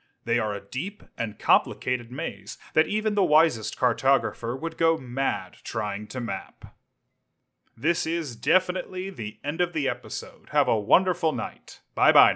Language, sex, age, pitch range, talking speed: English, male, 30-49, 120-145 Hz, 150 wpm